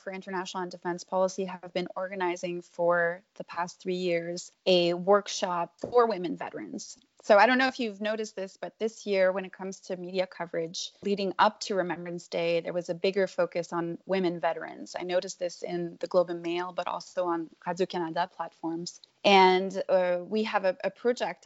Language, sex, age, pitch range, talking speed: English, female, 20-39, 175-200 Hz, 190 wpm